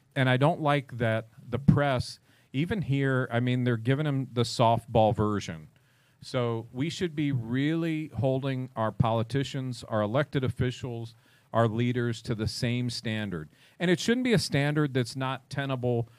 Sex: male